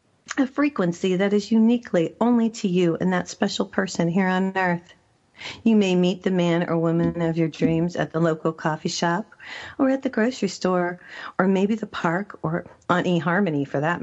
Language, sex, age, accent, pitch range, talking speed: English, female, 40-59, American, 165-215 Hz, 190 wpm